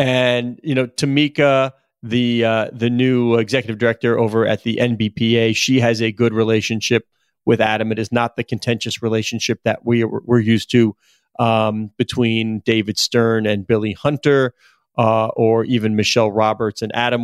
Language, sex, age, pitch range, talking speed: English, male, 30-49, 115-135 Hz, 160 wpm